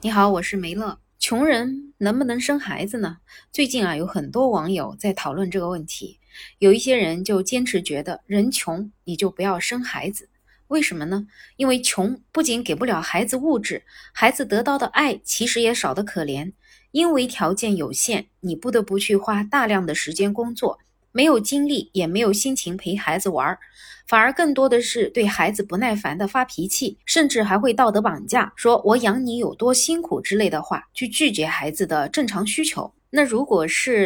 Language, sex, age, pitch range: Chinese, female, 20-39, 190-255 Hz